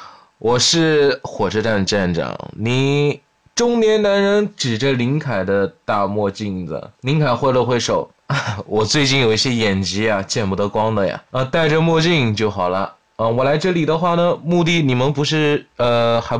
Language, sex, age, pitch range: Chinese, male, 20-39, 110-160 Hz